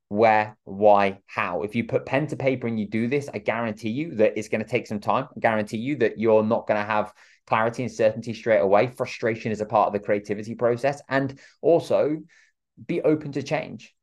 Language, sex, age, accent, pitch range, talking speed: English, male, 20-39, British, 105-120 Hz, 215 wpm